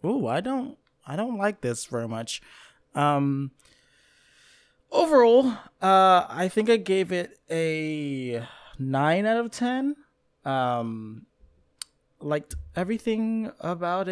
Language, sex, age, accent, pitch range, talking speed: English, male, 20-39, American, 120-175 Hz, 105 wpm